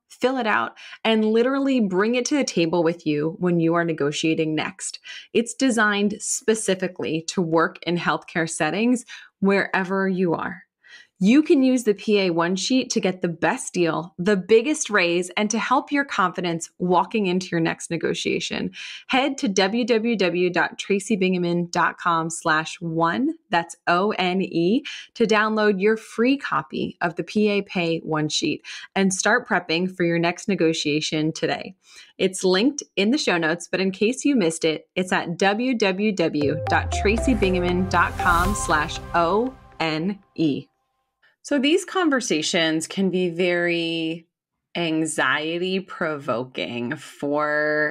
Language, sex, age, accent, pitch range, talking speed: English, female, 20-39, American, 170-230 Hz, 130 wpm